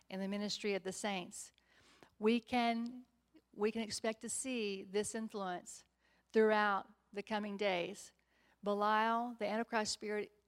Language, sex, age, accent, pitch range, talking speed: English, female, 50-69, American, 205-235 Hz, 130 wpm